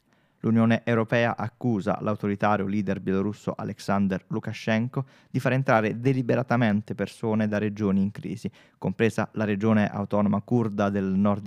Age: 20-39